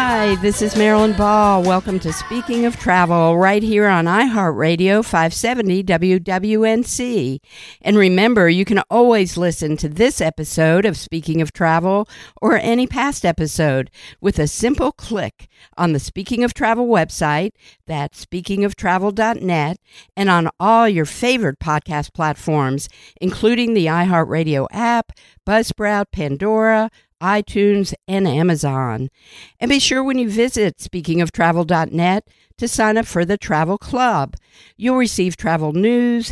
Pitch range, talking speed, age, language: 170-230 Hz, 130 wpm, 50-69, English